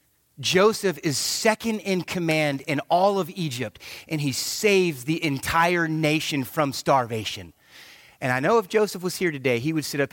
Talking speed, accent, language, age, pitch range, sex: 170 wpm, American, English, 30-49, 130-205 Hz, male